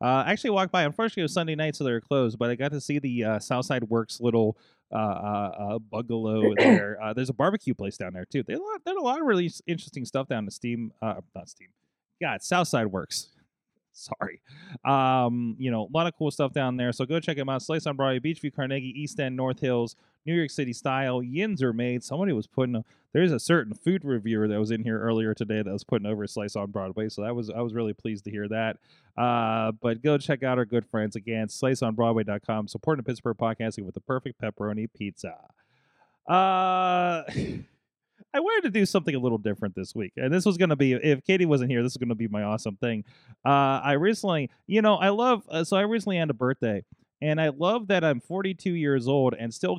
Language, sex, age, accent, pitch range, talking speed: English, male, 30-49, American, 115-160 Hz, 230 wpm